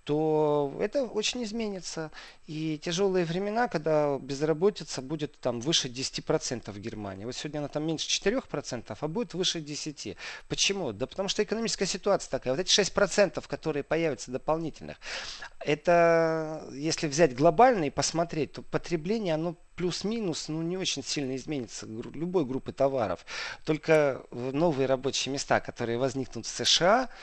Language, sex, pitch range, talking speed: Russian, male, 130-170 Hz, 140 wpm